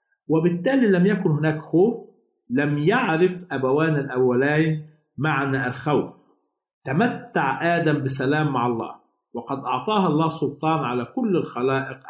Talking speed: 115 wpm